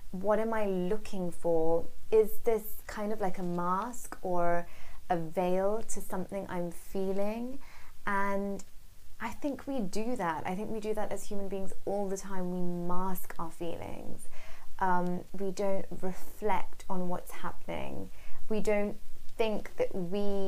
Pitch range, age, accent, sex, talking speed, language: 170-200 Hz, 20-39, British, female, 150 wpm, English